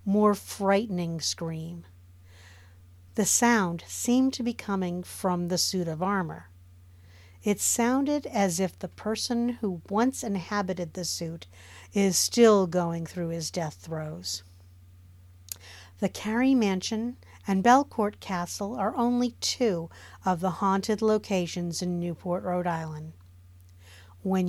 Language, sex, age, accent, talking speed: English, female, 50-69, American, 125 wpm